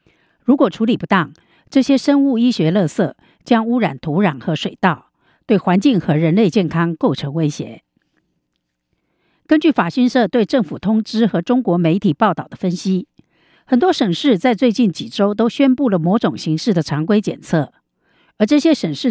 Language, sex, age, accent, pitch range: Chinese, female, 50-69, American, 170-245 Hz